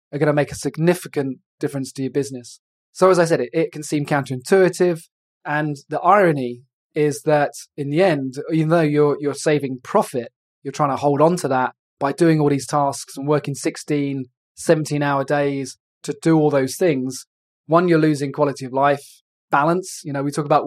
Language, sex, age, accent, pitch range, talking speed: English, male, 20-39, British, 140-155 Hz, 195 wpm